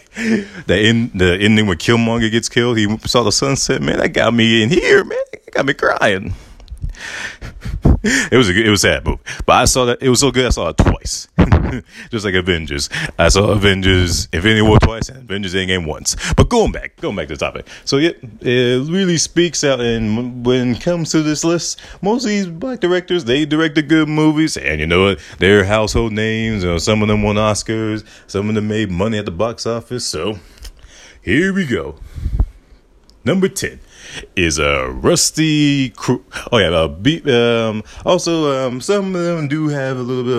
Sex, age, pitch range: male, 30-49, 100-140 Hz